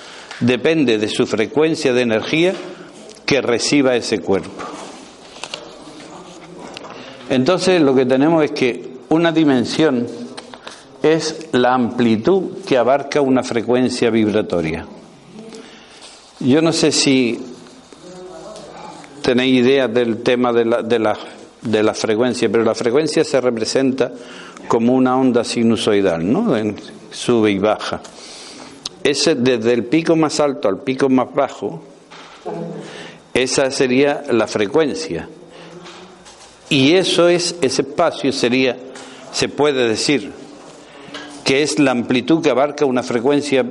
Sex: male